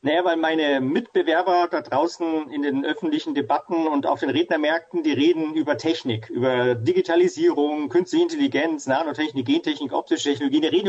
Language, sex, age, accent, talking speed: German, male, 40-59, German, 155 wpm